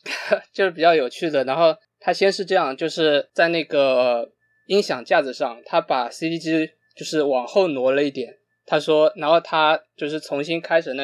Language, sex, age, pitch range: Chinese, male, 20-39, 135-165 Hz